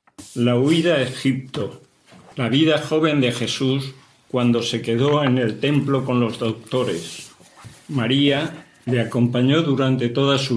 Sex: male